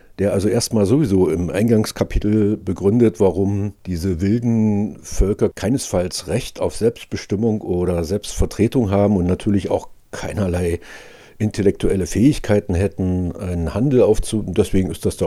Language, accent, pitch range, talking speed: German, German, 85-105 Hz, 125 wpm